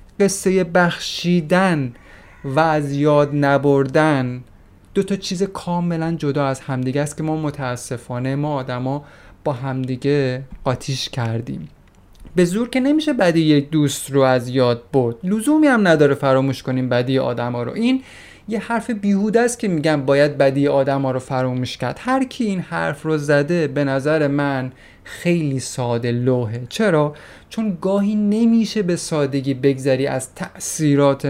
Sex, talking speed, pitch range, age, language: male, 145 wpm, 130-165 Hz, 30-49, Persian